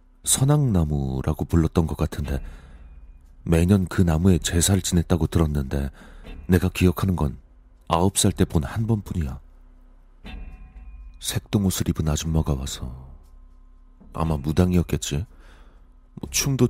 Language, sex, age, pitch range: Korean, male, 40-59, 65-90 Hz